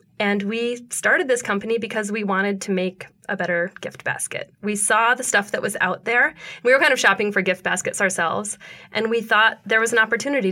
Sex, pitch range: female, 185-215 Hz